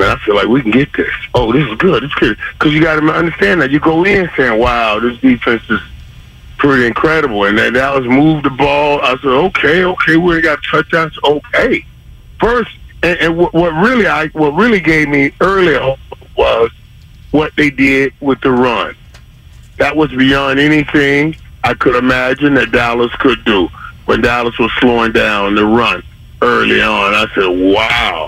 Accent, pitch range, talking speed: American, 125-155 Hz, 175 wpm